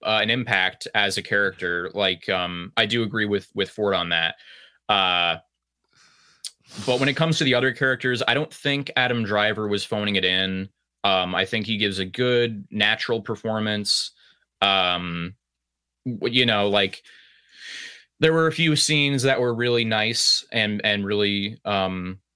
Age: 20-39